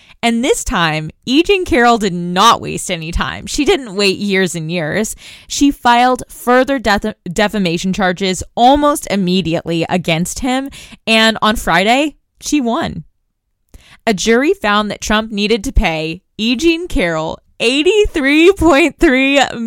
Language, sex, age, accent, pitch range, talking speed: English, female, 20-39, American, 180-245 Hz, 135 wpm